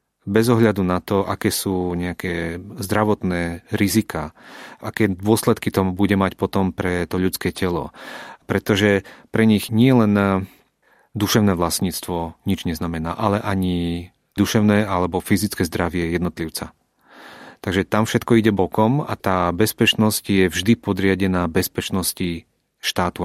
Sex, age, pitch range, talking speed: male, 30-49, 90-105 Hz, 125 wpm